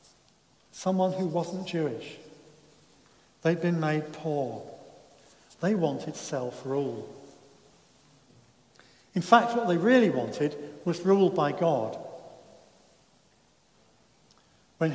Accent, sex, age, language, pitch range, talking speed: British, male, 50-69, English, 140-175 Hz, 90 wpm